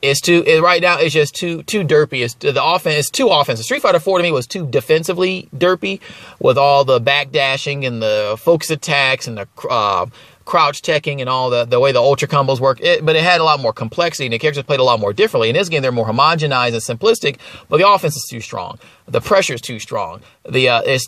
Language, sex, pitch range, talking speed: English, male, 130-170 Hz, 230 wpm